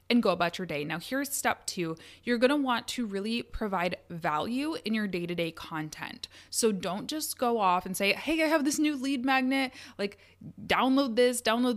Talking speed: 195 wpm